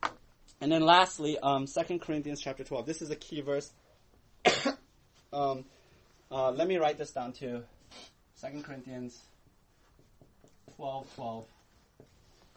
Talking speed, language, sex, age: 120 wpm, English, male, 30-49